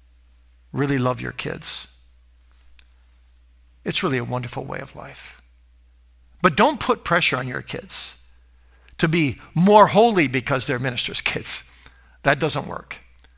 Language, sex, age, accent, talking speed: English, male, 50-69, American, 130 wpm